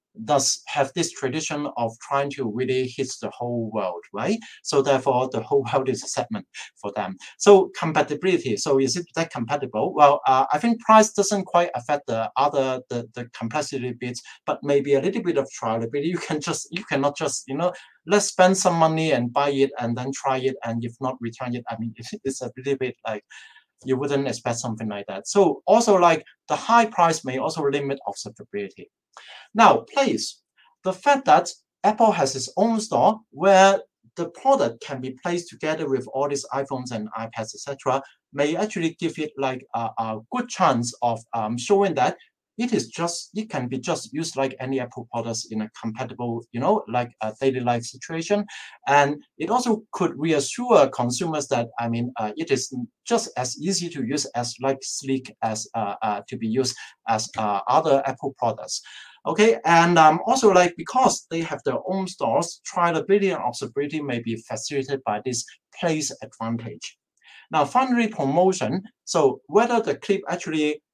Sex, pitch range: male, 125-175 Hz